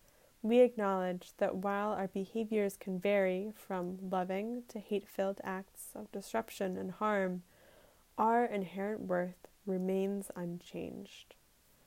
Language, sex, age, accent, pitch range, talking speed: English, female, 10-29, American, 190-220 Hz, 115 wpm